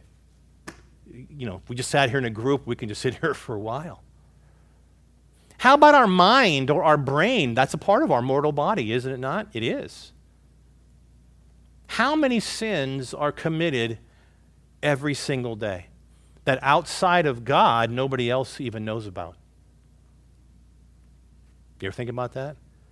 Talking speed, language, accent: 155 wpm, English, American